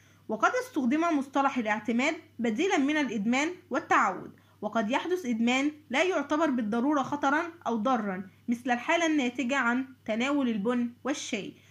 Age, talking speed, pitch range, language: 20-39, 125 wpm, 240-315 Hz, Arabic